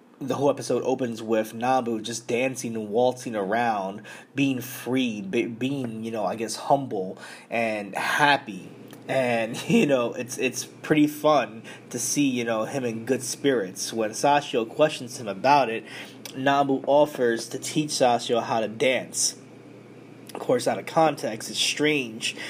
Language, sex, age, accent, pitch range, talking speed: English, male, 20-39, American, 115-135 Hz, 155 wpm